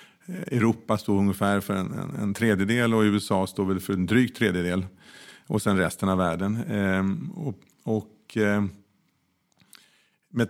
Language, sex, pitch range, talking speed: Swedish, male, 100-120 Hz, 120 wpm